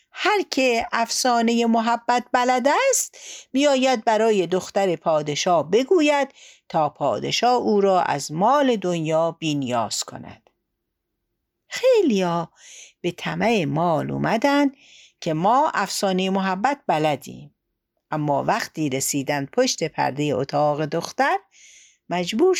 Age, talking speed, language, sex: 60-79, 100 wpm, Persian, female